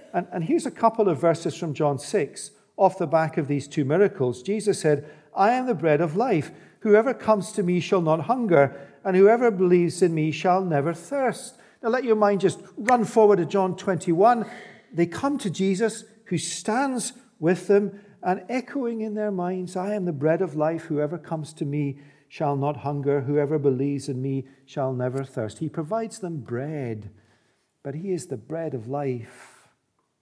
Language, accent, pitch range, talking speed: English, British, 145-185 Hz, 185 wpm